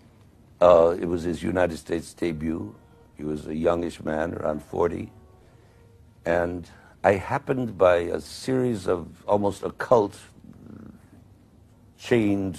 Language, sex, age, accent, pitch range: Chinese, male, 60-79, American, 85-115 Hz